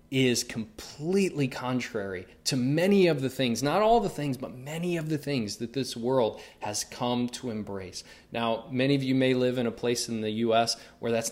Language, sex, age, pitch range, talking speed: English, male, 20-39, 105-135 Hz, 200 wpm